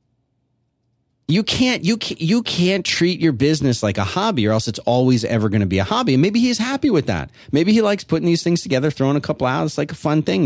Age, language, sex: 30-49, English, male